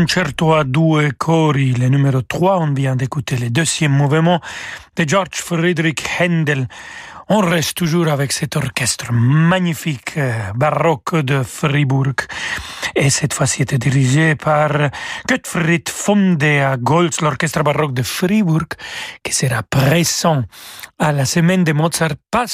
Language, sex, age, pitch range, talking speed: French, male, 40-59, 140-170 Hz, 135 wpm